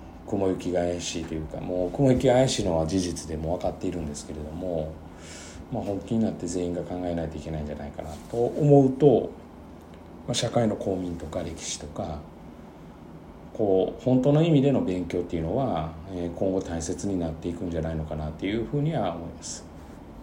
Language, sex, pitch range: Japanese, male, 80-110 Hz